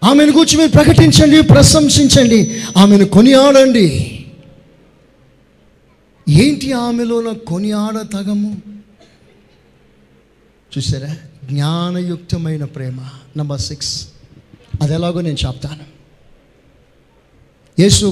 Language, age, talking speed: Telugu, 30-49, 70 wpm